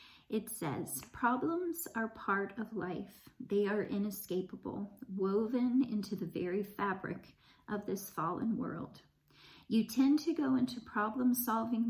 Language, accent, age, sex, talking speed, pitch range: English, American, 40-59, female, 125 wpm, 190-245 Hz